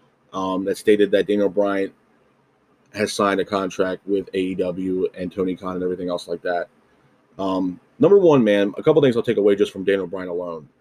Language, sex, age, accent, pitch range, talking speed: English, male, 30-49, American, 95-110 Hz, 195 wpm